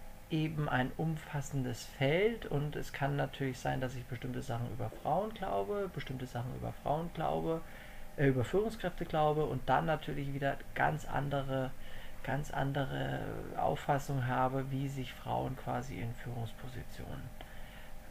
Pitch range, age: 115-150 Hz, 40-59